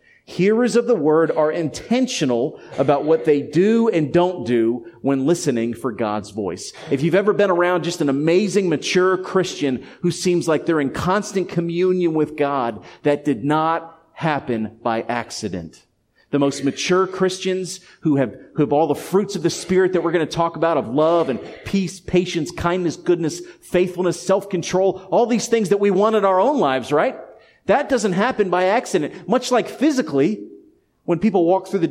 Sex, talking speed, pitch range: male, 180 wpm, 145-190 Hz